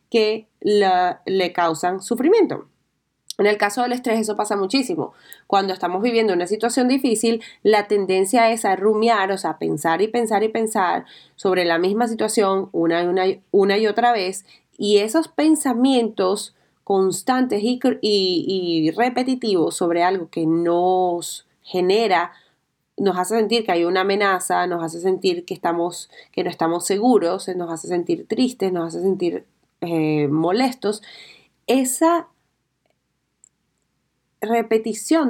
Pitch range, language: 180-235 Hz, Spanish